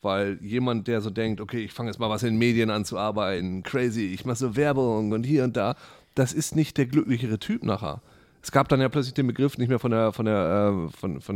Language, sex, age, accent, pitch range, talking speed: German, male, 30-49, German, 105-130 Hz, 220 wpm